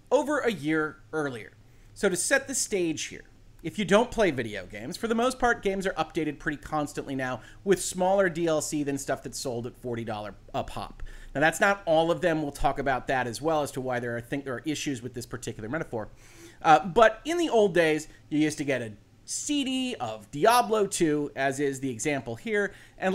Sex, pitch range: male, 130-190 Hz